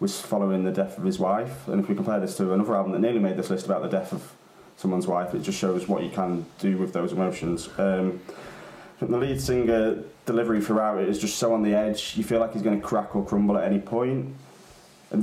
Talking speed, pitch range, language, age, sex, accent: 245 wpm, 95-115 Hz, English, 20-39, male, British